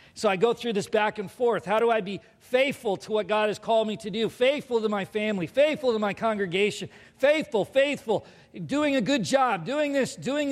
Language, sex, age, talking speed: English, male, 40-59, 215 wpm